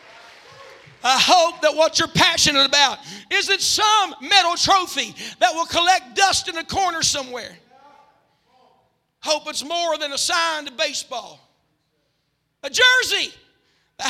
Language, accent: English, American